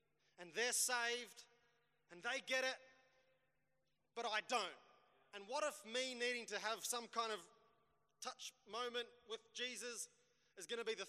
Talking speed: 155 wpm